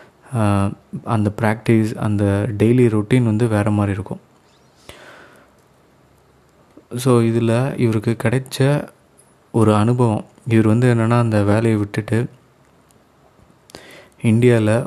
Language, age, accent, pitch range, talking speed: Tamil, 20-39, native, 105-120 Hz, 90 wpm